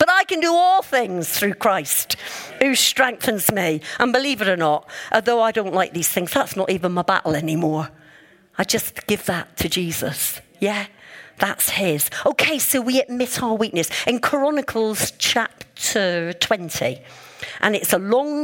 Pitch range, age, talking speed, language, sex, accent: 195-280 Hz, 50-69, 165 wpm, English, female, British